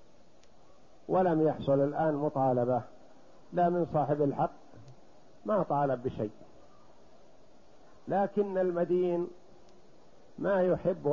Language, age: Arabic, 50-69